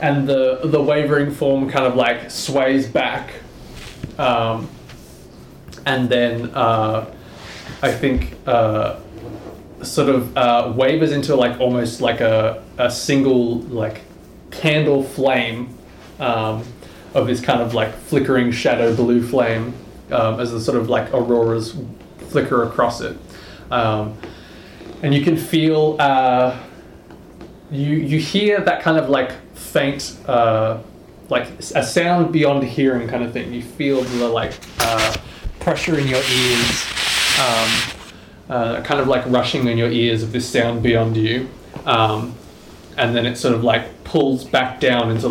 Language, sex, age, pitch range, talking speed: English, male, 20-39, 115-135 Hz, 145 wpm